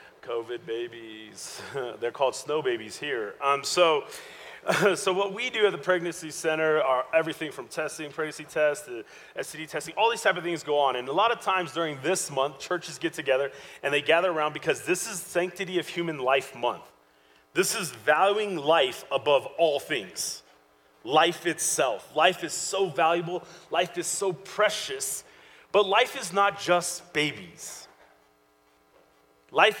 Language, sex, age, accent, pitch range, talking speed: English, male, 30-49, American, 150-185 Hz, 165 wpm